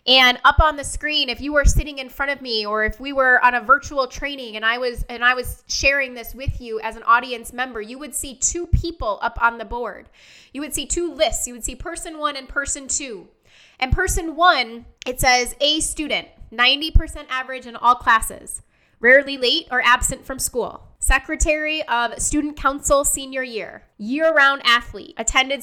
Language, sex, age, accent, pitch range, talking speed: English, female, 20-39, American, 245-305 Hz, 200 wpm